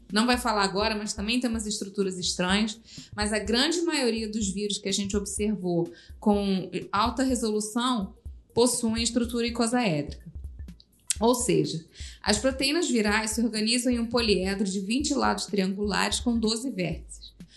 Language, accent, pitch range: Portuguese, Brazilian, 200-255 Hz